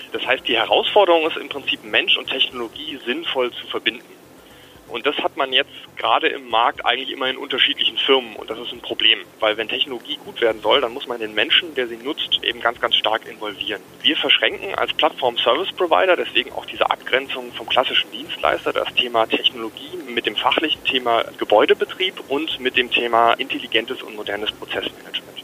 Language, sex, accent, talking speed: German, male, German, 180 wpm